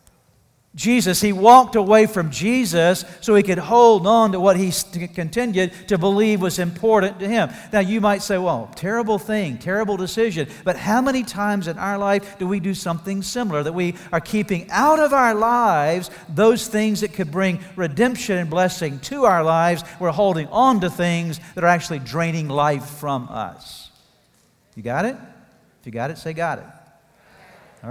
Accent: American